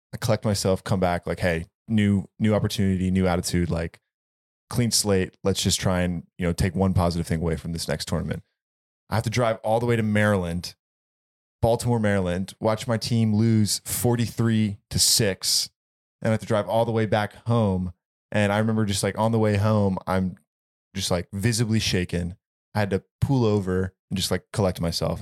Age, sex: 20-39, male